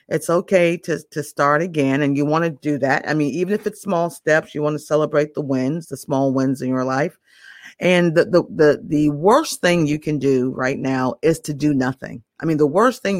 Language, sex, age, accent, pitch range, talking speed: English, female, 40-59, American, 135-165 Hz, 235 wpm